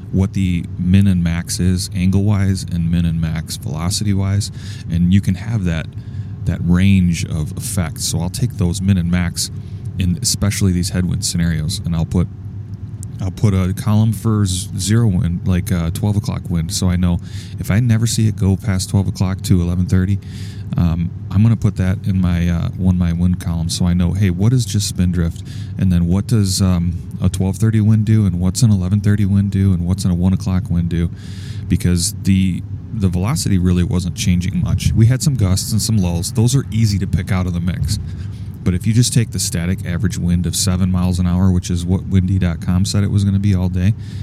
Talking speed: 220 wpm